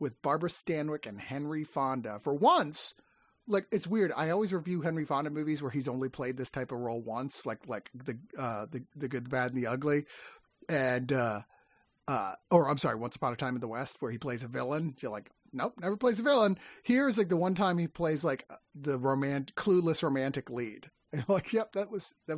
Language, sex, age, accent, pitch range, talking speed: English, male, 30-49, American, 135-190 Hz, 225 wpm